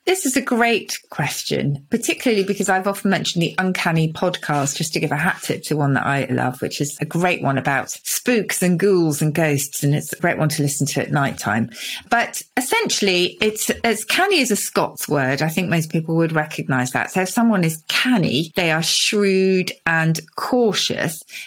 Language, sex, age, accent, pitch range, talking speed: English, female, 40-59, British, 155-205 Hz, 200 wpm